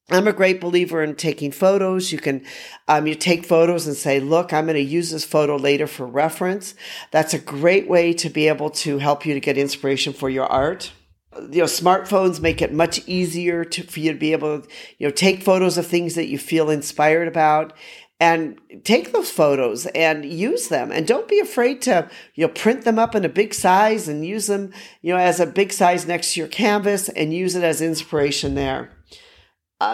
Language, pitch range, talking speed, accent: English, 145-185 Hz, 215 wpm, American